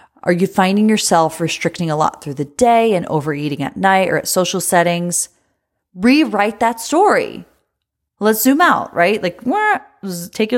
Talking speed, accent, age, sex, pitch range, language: 160 wpm, American, 30-49, female, 165-215 Hz, English